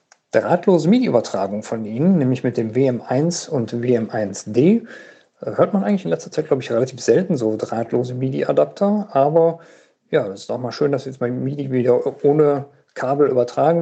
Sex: male